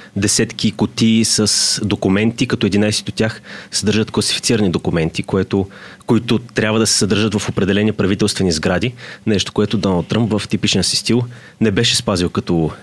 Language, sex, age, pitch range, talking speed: Bulgarian, male, 30-49, 100-120 Hz, 155 wpm